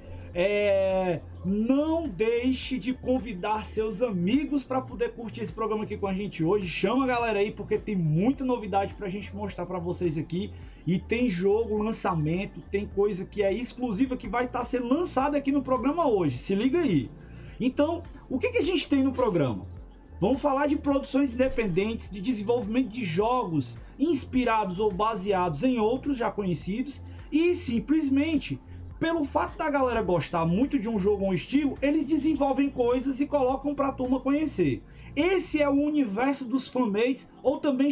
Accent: Brazilian